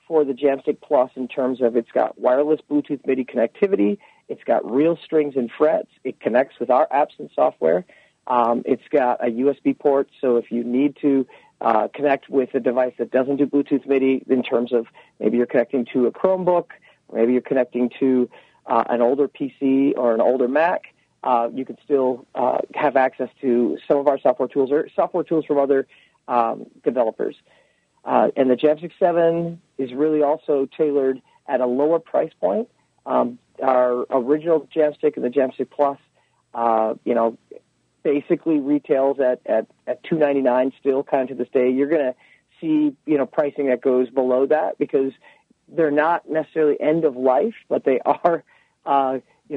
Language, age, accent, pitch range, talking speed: English, 40-59, American, 125-150 Hz, 180 wpm